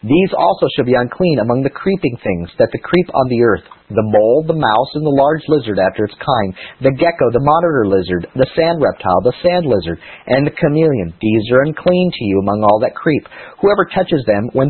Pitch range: 120-165 Hz